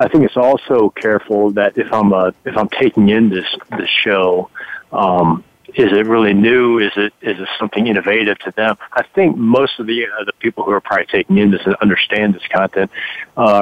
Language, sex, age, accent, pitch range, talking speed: English, male, 50-69, American, 95-110 Hz, 210 wpm